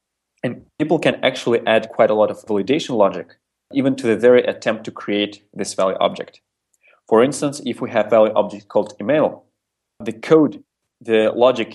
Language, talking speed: English, 175 wpm